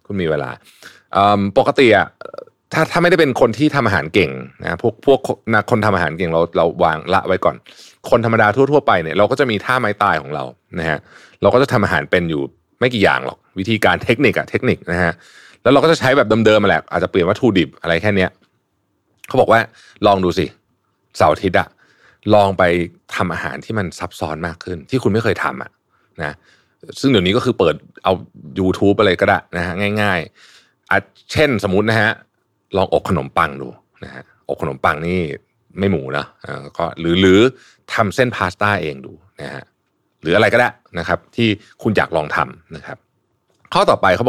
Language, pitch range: Thai, 90-125 Hz